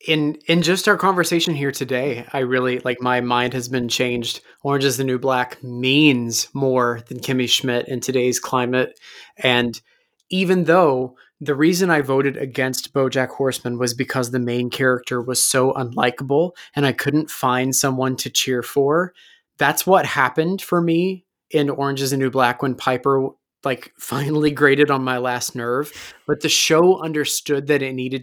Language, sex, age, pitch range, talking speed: English, male, 20-39, 125-150 Hz, 170 wpm